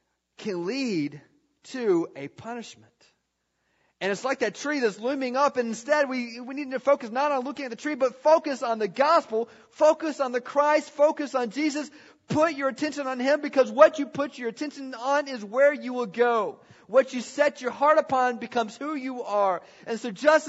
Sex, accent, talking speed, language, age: male, American, 200 wpm, English, 40-59